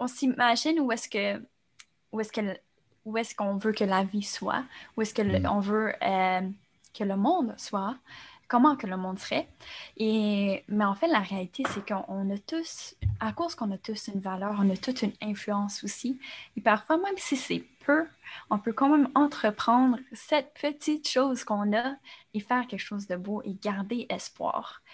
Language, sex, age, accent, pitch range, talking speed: French, female, 10-29, Canadian, 200-250 Hz, 190 wpm